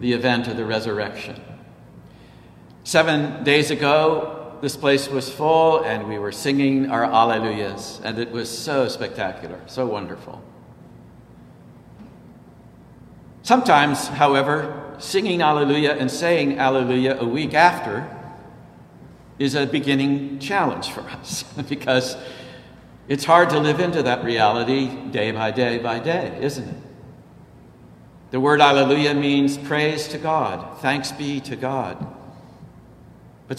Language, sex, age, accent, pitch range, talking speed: English, male, 60-79, American, 125-150 Hz, 120 wpm